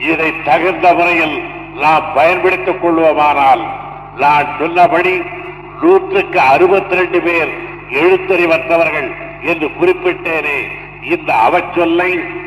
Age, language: 60-79, Tamil